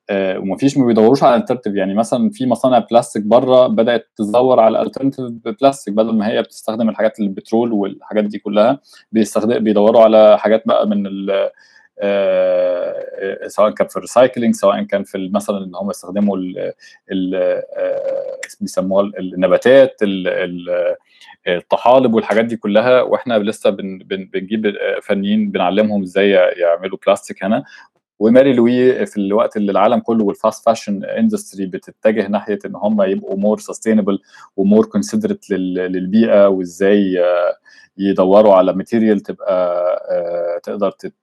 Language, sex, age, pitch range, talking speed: Arabic, male, 20-39, 100-140 Hz, 120 wpm